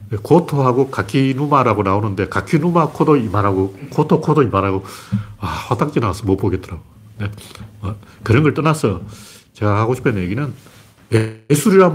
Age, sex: 40-59, male